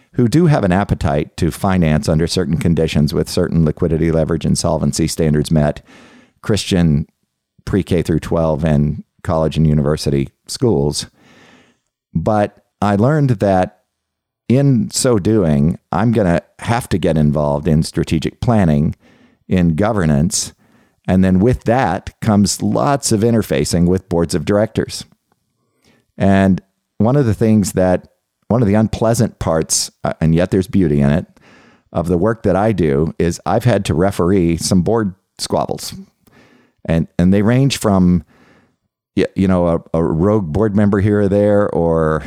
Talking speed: 150 wpm